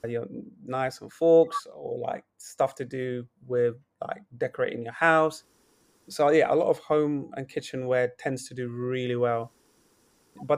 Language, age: English, 30-49